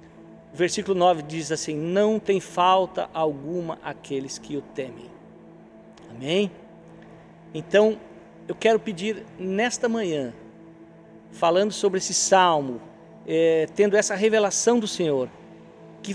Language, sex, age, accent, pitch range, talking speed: Portuguese, male, 50-69, Brazilian, 160-195 Hz, 110 wpm